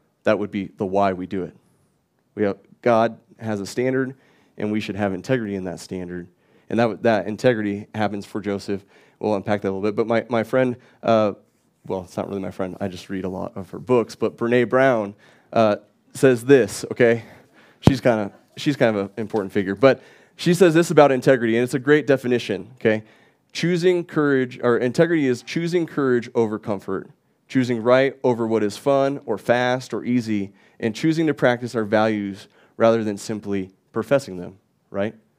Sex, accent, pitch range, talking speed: male, American, 100-125 Hz, 190 wpm